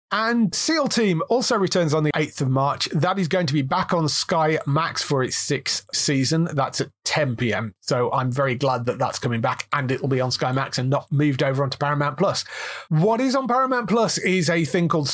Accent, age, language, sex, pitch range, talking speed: British, 30-49, English, male, 135-180 Hz, 220 wpm